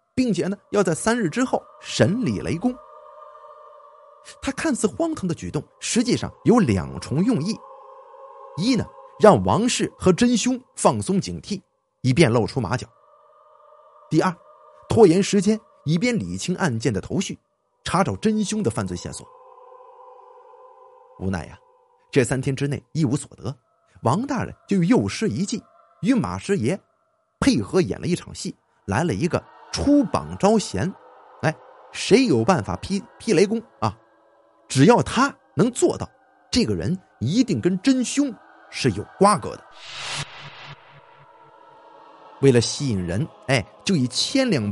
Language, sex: Chinese, male